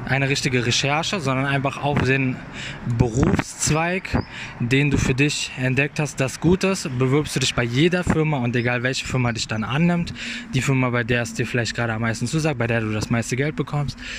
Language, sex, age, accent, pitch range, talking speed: German, male, 20-39, German, 115-140 Hz, 200 wpm